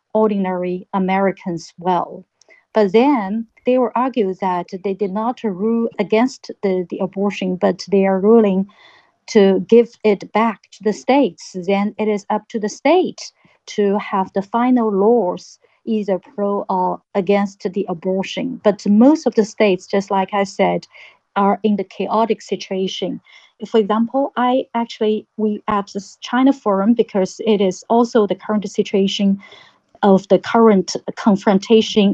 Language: English